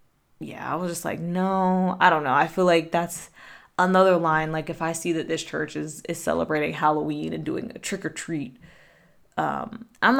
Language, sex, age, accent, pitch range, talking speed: English, female, 20-39, American, 160-205 Hz, 200 wpm